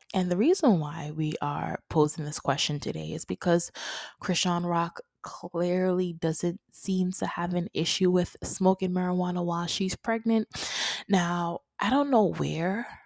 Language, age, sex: English, 20-39, female